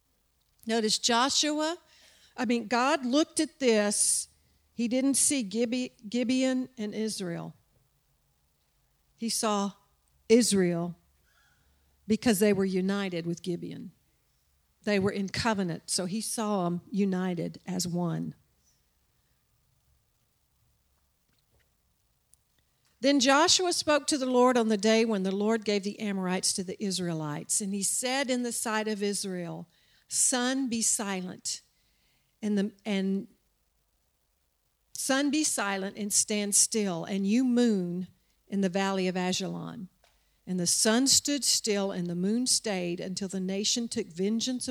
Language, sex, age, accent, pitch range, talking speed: English, female, 50-69, American, 180-235 Hz, 125 wpm